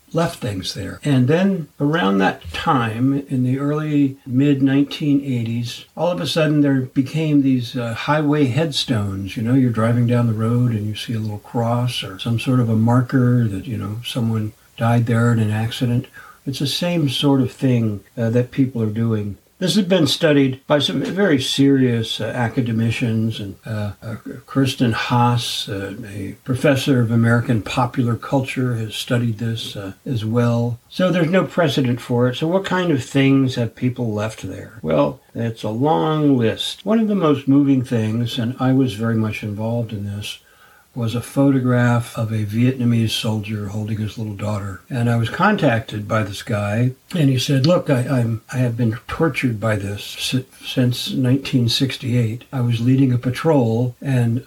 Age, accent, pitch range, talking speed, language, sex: 60-79, American, 115-135 Hz, 175 wpm, English, male